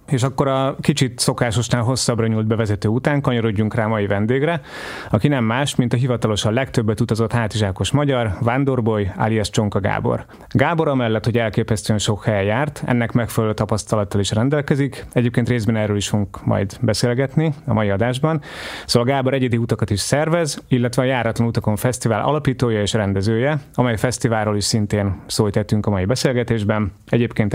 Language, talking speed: Hungarian, 155 wpm